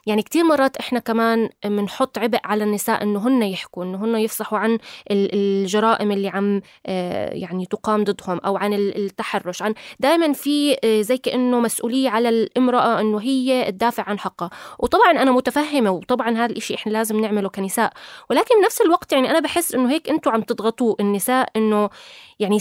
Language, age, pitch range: Arabic, 20-39, 210-260 Hz